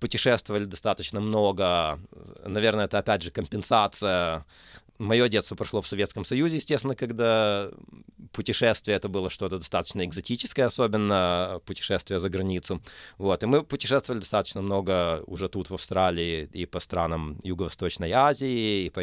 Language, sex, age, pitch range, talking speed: Russian, male, 30-49, 95-120 Hz, 135 wpm